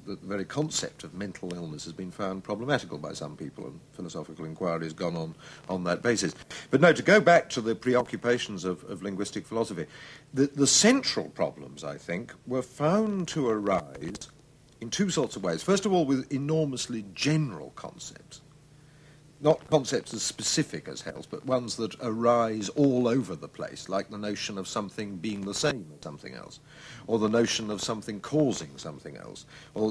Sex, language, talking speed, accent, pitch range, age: male, English, 180 wpm, British, 100-150 Hz, 60-79